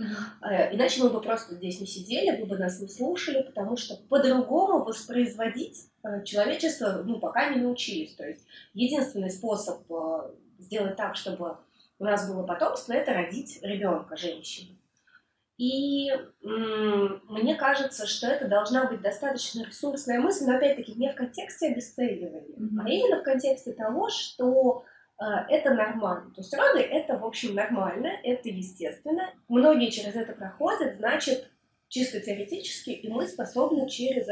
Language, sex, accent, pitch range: Russian, female, native, 205-270 Hz